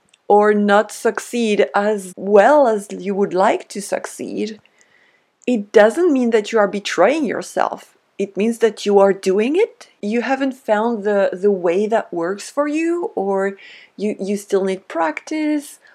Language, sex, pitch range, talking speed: English, female, 200-255 Hz, 160 wpm